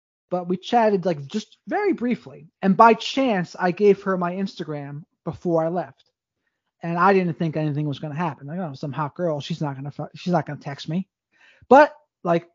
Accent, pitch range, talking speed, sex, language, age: American, 155-220 Hz, 220 wpm, male, English, 30-49